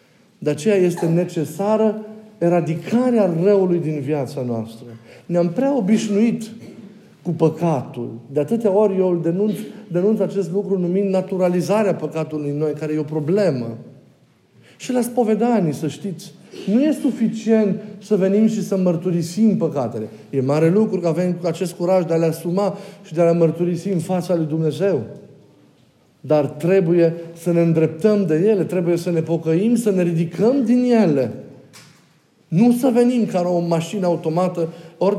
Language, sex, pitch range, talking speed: Romanian, male, 160-205 Hz, 155 wpm